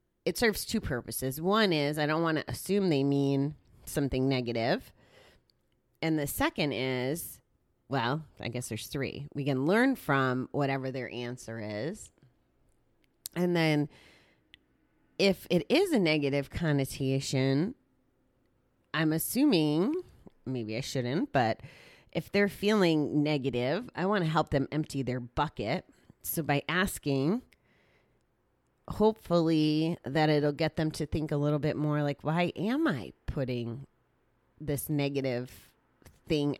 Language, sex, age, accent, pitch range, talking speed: English, female, 30-49, American, 130-165 Hz, 130 wpm